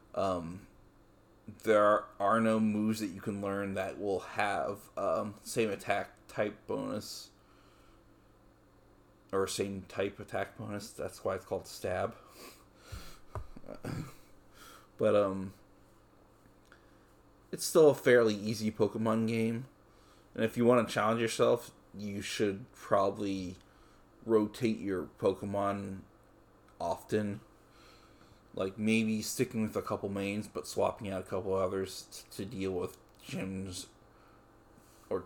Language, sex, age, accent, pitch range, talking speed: English, male, 30-49, American, 100-110 Hz, 115 wpm